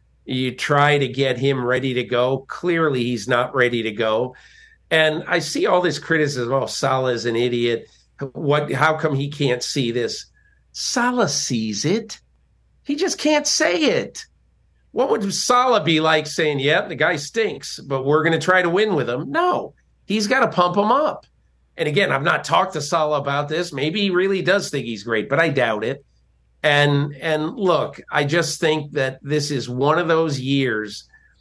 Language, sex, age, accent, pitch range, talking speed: English, male, 50-69, American, 130-170 Hz, 190 wpm